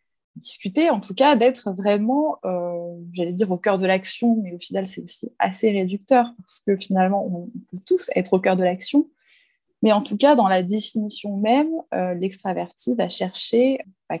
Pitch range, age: 185-240 Hz, 20-39